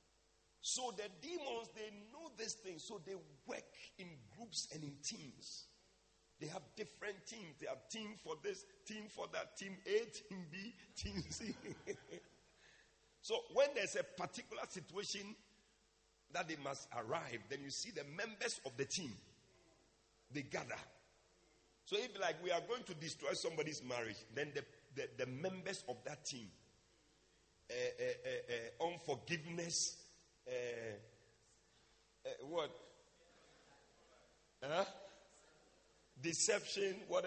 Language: English